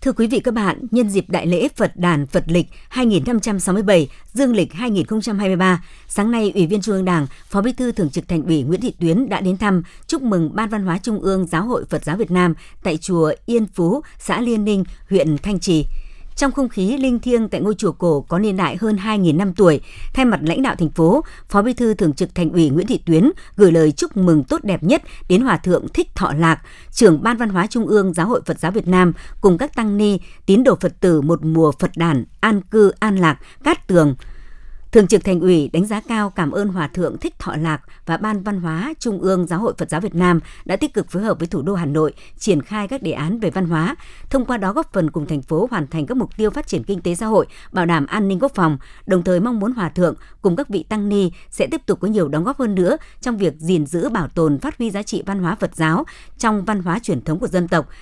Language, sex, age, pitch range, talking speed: Vietnamese, male, 60-79, 165-215 Hz, 255 wpm